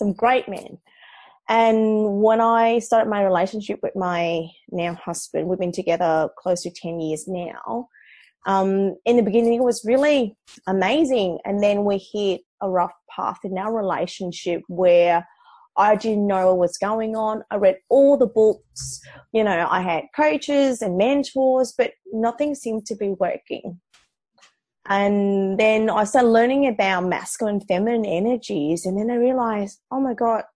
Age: 20-39